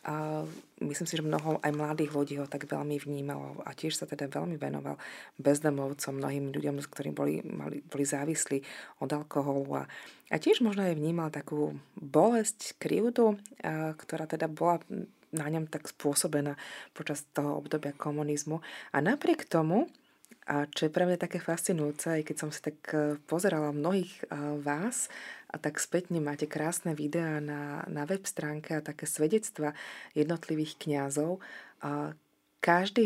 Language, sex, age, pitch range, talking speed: Slovak, female, 20-39, 145-170 Hz, 150 wpm